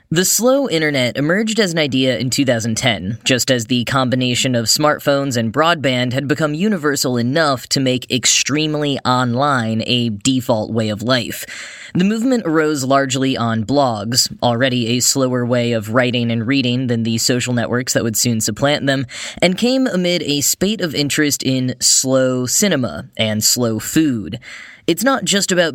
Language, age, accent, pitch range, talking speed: English, 10-29, American, 120-160 Hz, 165 wpm